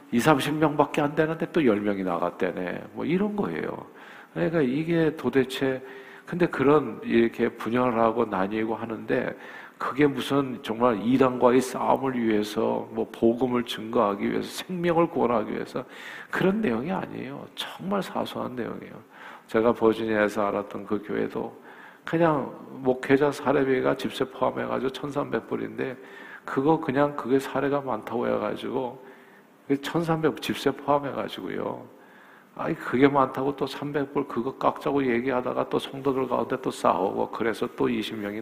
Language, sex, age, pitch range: Korean, male, 50-69, 105-140 Hz